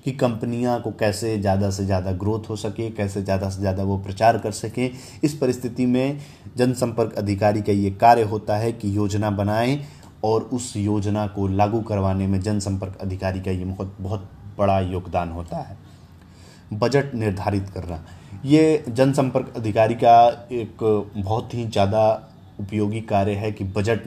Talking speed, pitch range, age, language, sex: 160 wpm, 100-120 Hz, 30-49, Hindi, male